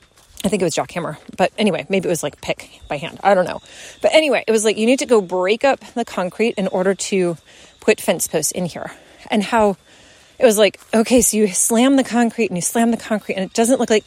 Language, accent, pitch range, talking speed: English, American, 200-250 Hz, 250 wpm